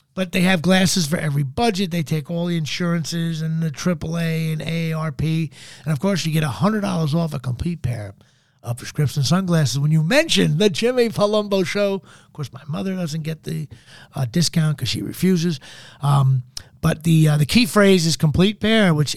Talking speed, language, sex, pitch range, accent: 190 wpm, English, male, 145-185 Hz, American